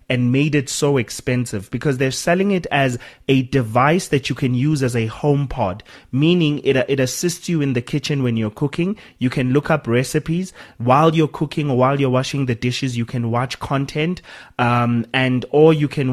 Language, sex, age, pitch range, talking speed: English, male, 30-49, 120-150 Hz, 200 wpm